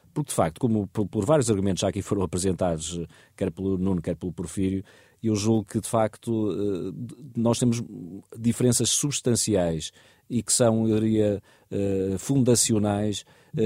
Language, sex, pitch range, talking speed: Portuguese, male, 100-115 Hz, 140 wpm